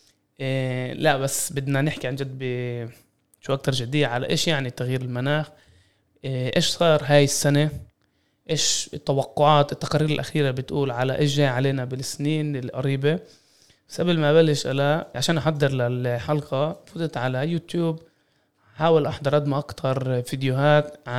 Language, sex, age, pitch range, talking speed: Arabic, male, 20-39, 135-160 Hz, 125 wpm